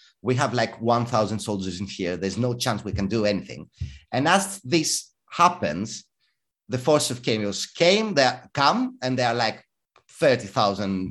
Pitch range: 115-170 Hz